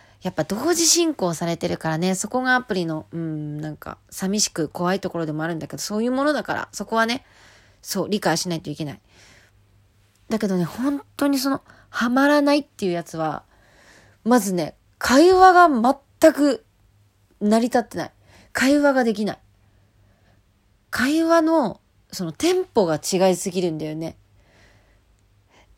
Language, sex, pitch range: Japanese, female, 145-245 Hz